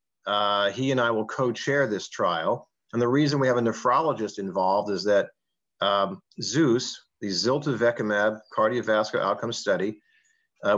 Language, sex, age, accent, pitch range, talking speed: English, male, 50-69, American, 105-130 Hz, 150 wpm